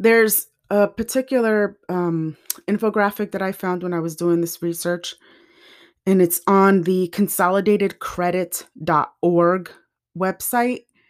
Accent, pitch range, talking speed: American, 165-200 Hz, 110 wpm